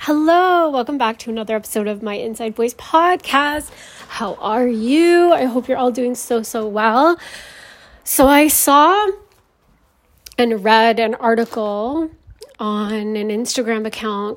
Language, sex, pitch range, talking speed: English, female, 205-245 Hz, 140 wpm